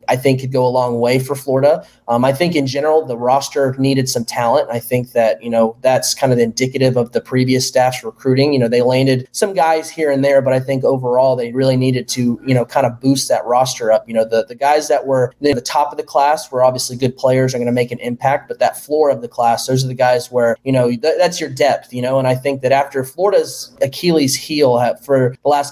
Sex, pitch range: male, 125-140 Hz